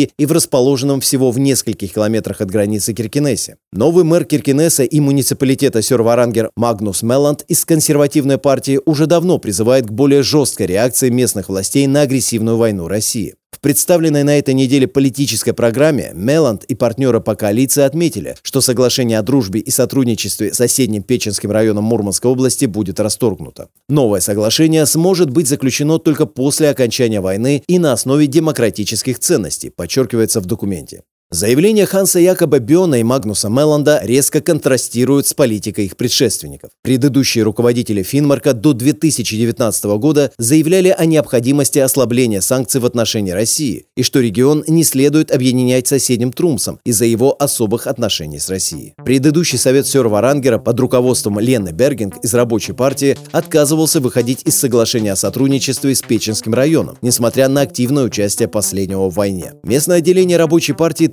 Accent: native